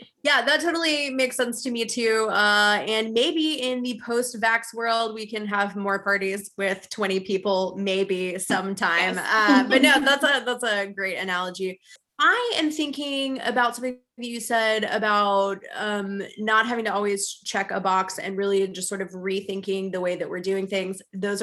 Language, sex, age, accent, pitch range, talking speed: English, female, 20-39, American, 190-235 Hz, 175 wpm